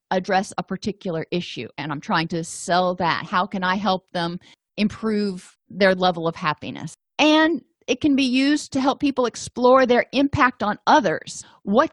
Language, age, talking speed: English, 40-59, 170 wpm